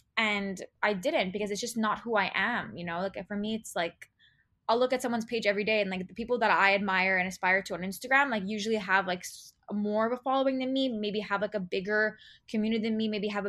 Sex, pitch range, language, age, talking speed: female, 195-230 Hz, English, 20-39, 250 wpm